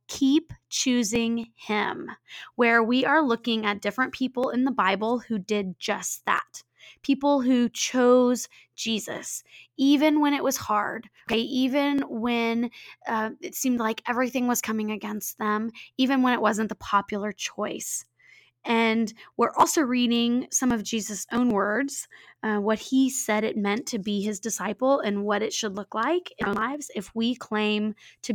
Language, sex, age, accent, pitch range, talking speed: English, female, 20-39, American, 210-250 Hz, 160 wpm